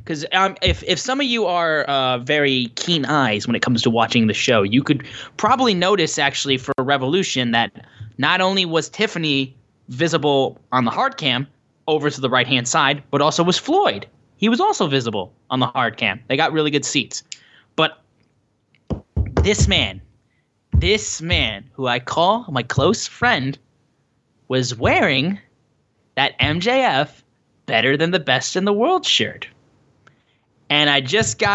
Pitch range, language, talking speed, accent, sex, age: 130-200 Hz, English, 155 wpm, American, male, 10-29